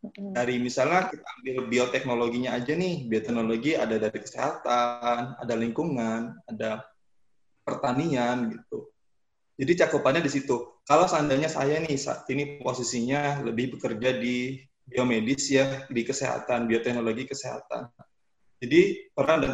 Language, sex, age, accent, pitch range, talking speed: Indonesian, male, 20-39, native, 120-145 Hz, 120 wpm